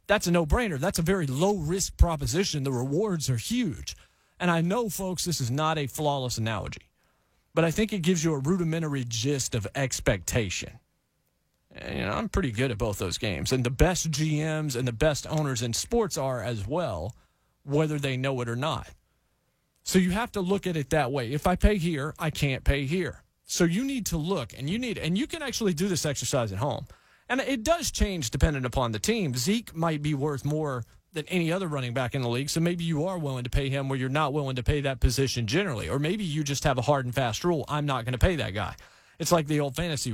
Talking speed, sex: 235 wpm, male